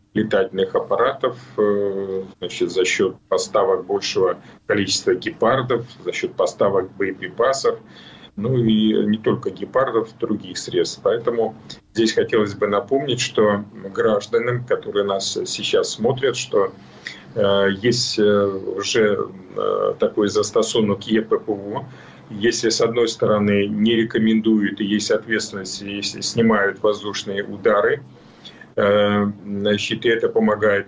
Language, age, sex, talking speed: Ukrainian, 40-59, male, 110 wpm